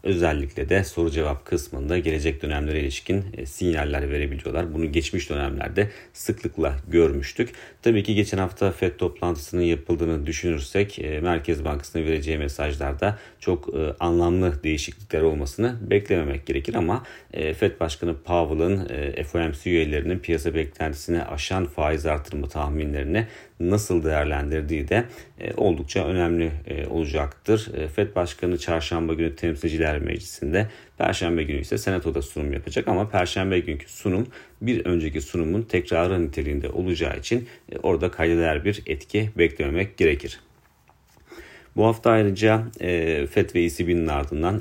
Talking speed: 120 wpm